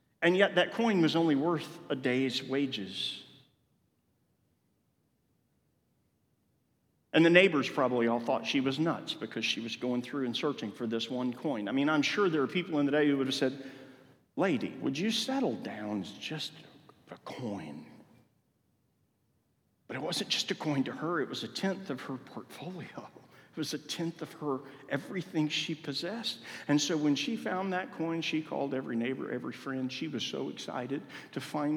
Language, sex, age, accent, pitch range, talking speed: English, male, 40-59, American, 135-175 Hz, 180 wpm